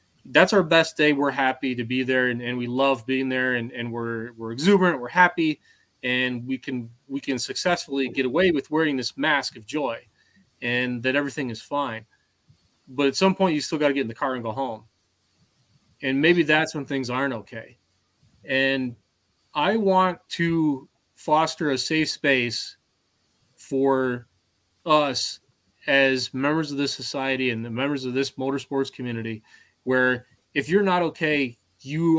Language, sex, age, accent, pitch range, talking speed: English, male, 30-49, American, 125-155 Hz, 170 wpm